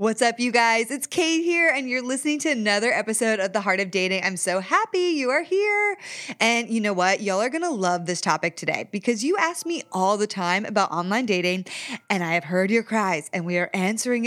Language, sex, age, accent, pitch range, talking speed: English, female, 20-39, American, 185-250 Hz, 230 wpm